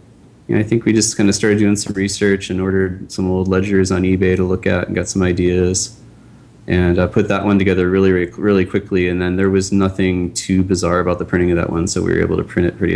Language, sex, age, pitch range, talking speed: English, male, 20-39, 90-100 Hz, 250 wpm